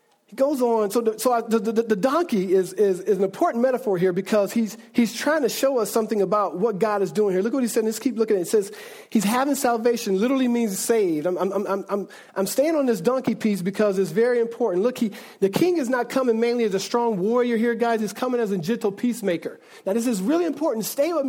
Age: 40-59